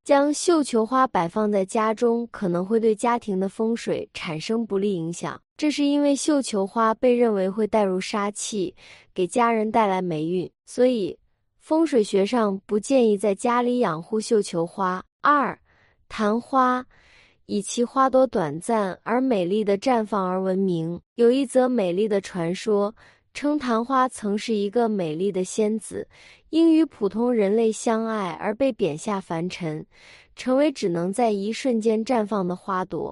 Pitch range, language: 195-245 Hz, Chinese